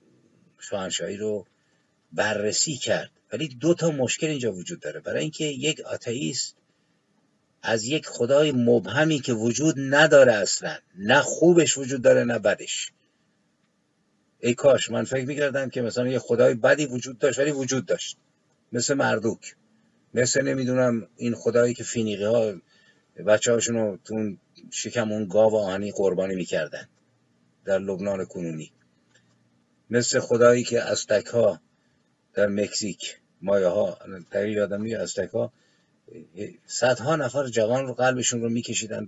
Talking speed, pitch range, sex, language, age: 130 wpm, 105-140 Hz, male, Persian, 50-69